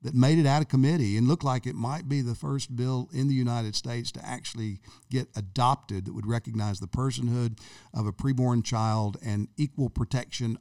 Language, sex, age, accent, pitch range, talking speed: English, male, 50-69, American, 110-130 Hz, 200 wpm